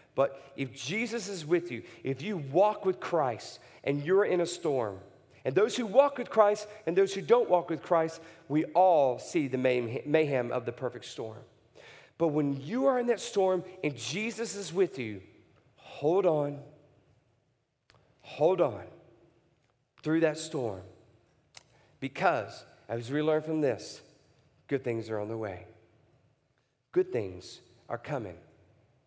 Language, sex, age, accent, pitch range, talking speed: English, male, 40-59, American, 120-185 Hz, 150 wpm